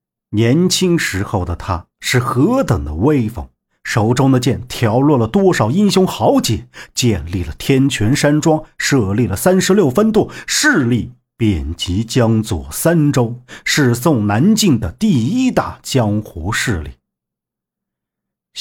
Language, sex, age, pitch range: Chinese, male, 50-69, 100-140 Hz